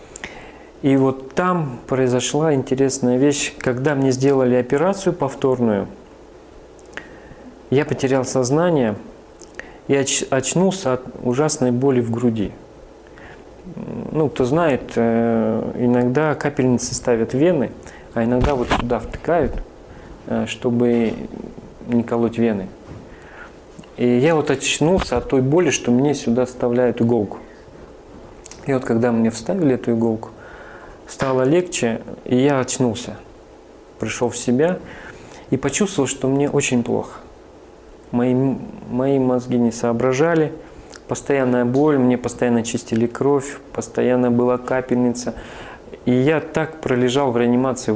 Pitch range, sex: 115-135 Hz, male